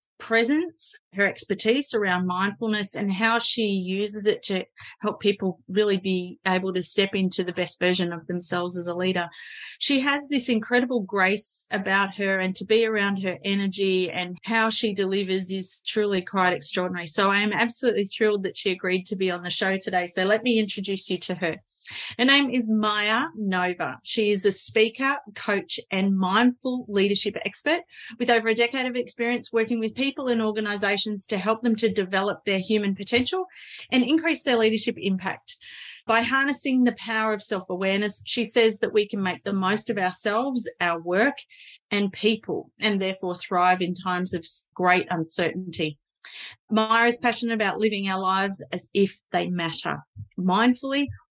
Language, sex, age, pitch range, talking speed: English, female, 30-49, 185-230 Hz, 170 wpm